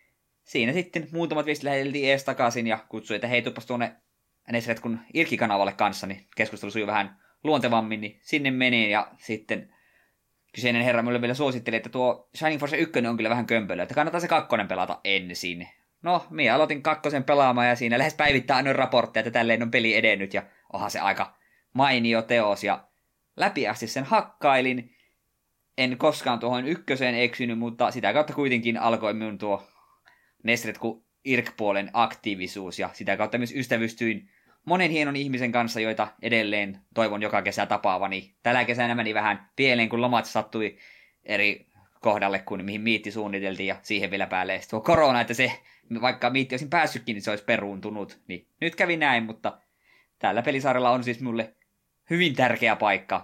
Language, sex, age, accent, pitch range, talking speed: Finnish, male, 20-39, native, 105-130 Hz, 165 wpm